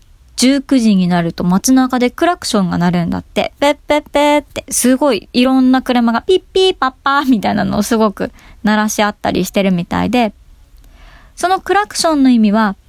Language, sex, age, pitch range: Japanese, male, 20-39, 215-320 Hz